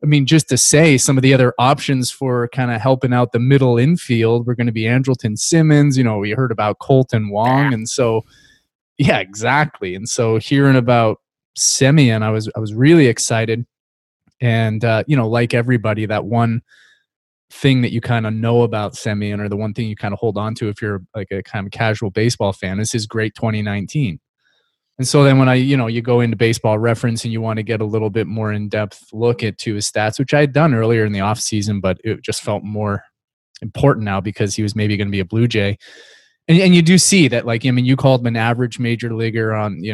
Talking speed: 235 wpm